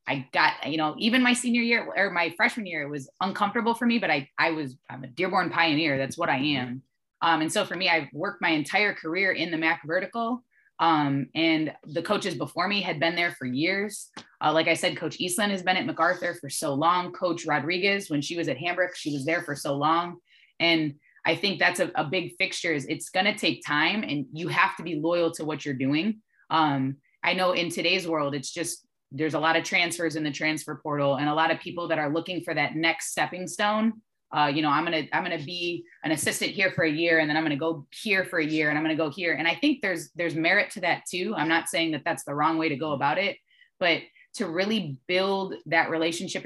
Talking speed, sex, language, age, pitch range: 250 wpm, female, English, 20-39, 155-185 Hz